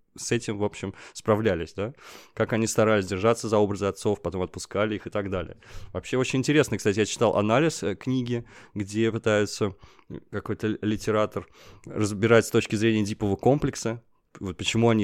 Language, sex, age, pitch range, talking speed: Russian, male, 20-39, 100-120 Hz, 160 wpm